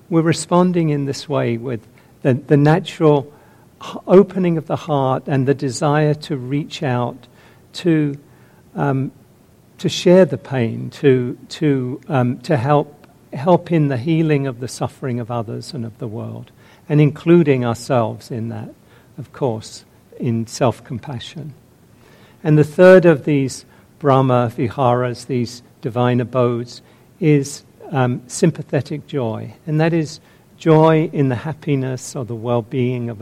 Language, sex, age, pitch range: English, male, 50-69, 125-150 Hz